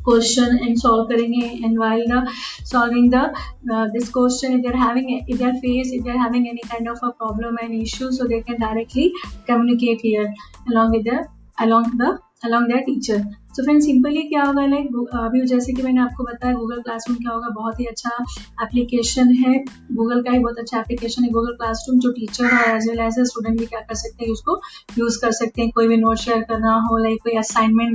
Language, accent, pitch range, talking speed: Hindi, native, 225-250 Hz, 190 wpm